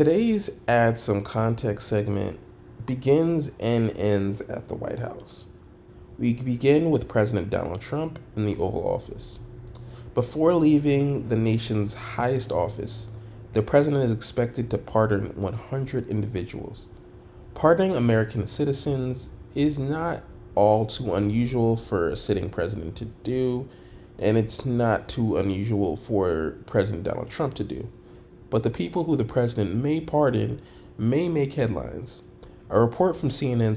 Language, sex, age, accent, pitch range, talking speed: English, male, 20-39, American, 105-130 Hz, 135 wpm